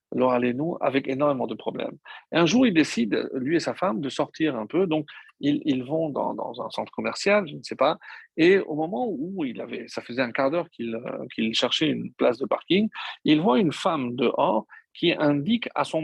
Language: French